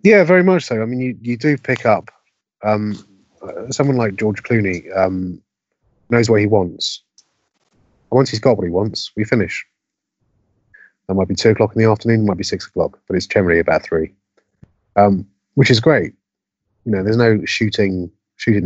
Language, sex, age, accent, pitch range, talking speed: English, male, 30-49, British, 95-110 Hz, 185 wpm